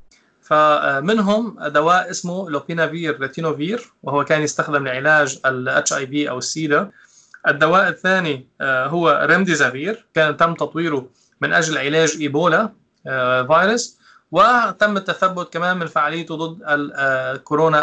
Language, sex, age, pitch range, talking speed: Arabic, male, 20-39, 150-190 Hz, 110 wpm